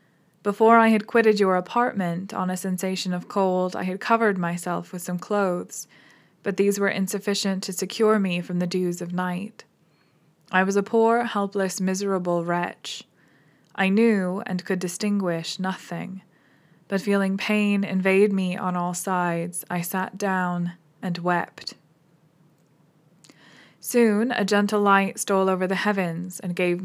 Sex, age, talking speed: female, 20-39, 145 wpm